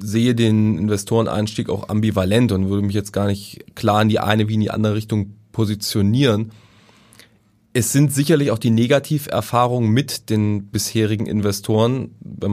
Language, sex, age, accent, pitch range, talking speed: German, male, 20-39, German, 105-115 Hz, 155 wpm